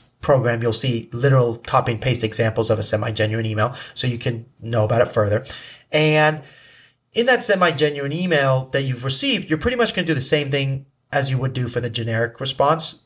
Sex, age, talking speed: male, 30-49, 200 wpm